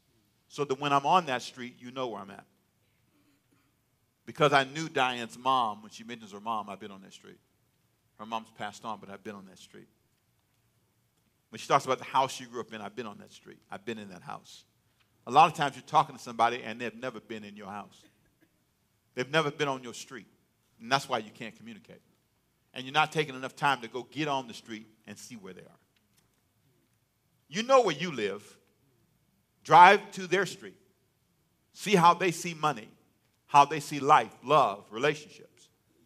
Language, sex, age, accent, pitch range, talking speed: English, male, 50-69, American, 115-155 Hz, 200 wpm